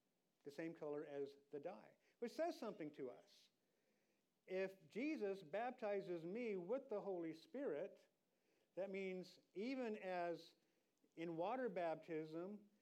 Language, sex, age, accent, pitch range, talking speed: English, male, 50-69, American, 160-205 Hz, 120 wpm